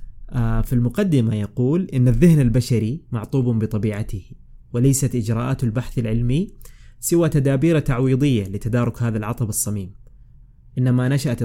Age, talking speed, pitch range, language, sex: 20-39, 110 wpm, 115-130 Hz, Arabic, male